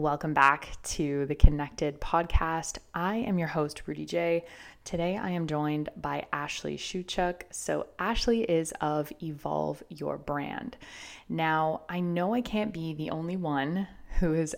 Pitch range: 145-175 Hz